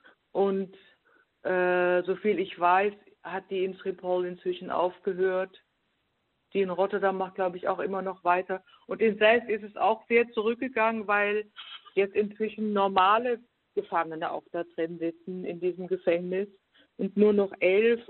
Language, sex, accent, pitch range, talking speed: German, female, German, 180-210 Hz, 150 wpm